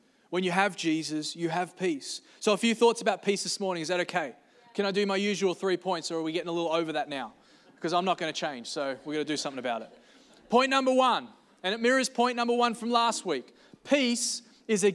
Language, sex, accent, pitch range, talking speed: English, male, Australian, 170-235 Hz, 255 wpm